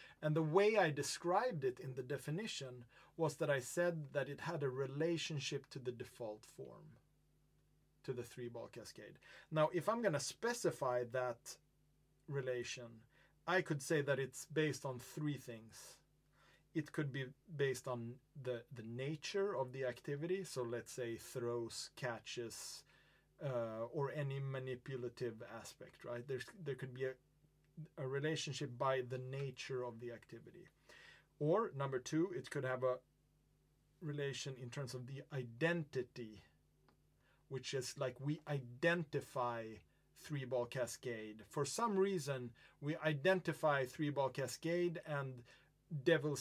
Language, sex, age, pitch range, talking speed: English, male, 30-49, 125-155 Hz, 140 wpm